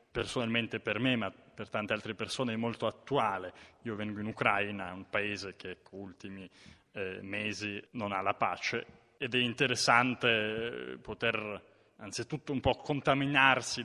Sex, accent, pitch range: male, native, 110-130 Hz